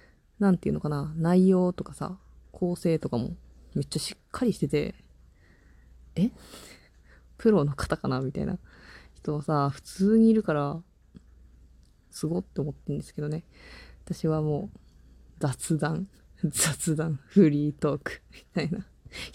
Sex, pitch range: female, 130-190 Hz